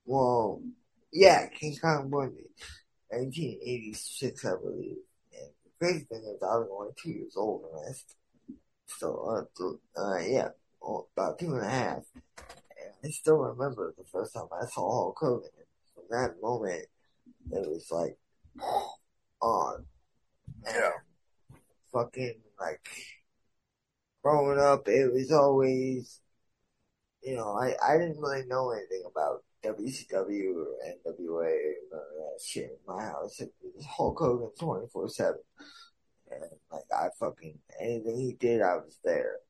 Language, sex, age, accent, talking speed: English, male, 20-39, American, 145 wpm